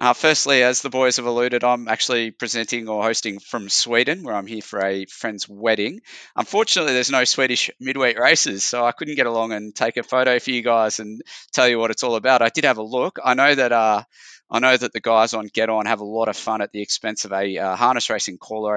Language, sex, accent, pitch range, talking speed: English, male, Australian, 105-125 Hz, 245 wpm